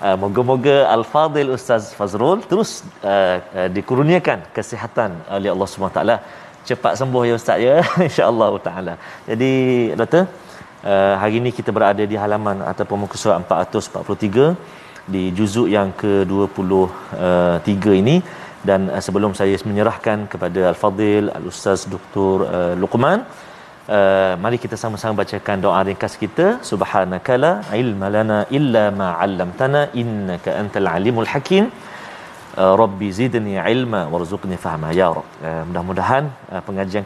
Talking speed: 125 wpm